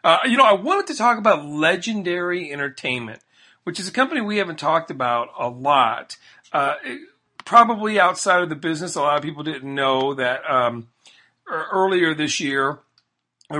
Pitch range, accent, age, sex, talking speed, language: 130-175 Hz, American, 40-59, male, 170 wpm, English